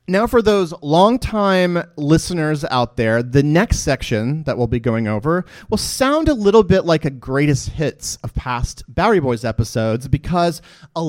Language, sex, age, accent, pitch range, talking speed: English, male, 30-49, American, 125-185 Hz, 170 wpm